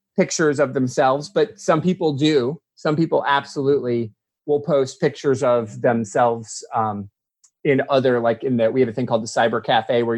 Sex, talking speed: male, 175 wpm